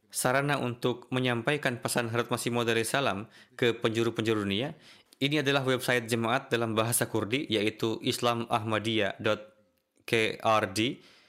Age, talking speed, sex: 20-39, 105 wpm, male